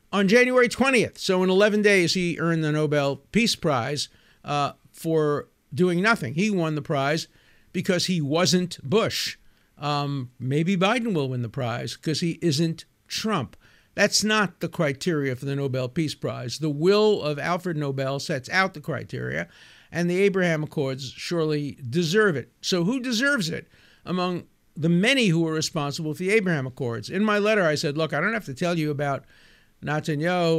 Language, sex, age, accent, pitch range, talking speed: English, male, 50-69, American, 145-185 Hz, 175 wpm